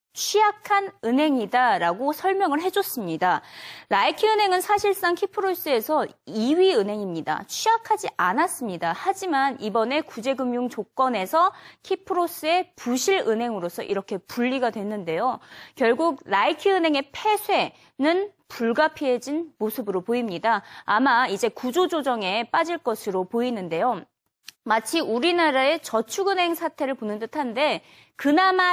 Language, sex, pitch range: Korean, female, 230-365 Hz